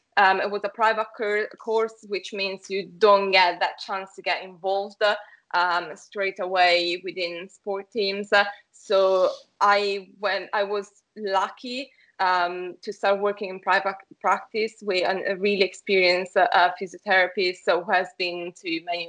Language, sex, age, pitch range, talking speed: English, female, 20-39, 175-200 Hz, 165 wpm